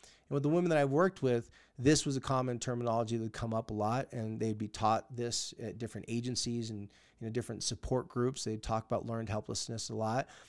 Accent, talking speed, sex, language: American, 230 wpm, male, English